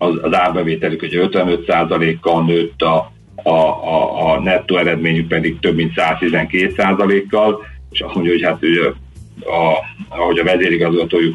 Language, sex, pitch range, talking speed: Hungarian, male, 80-90 Hz, 135 wpm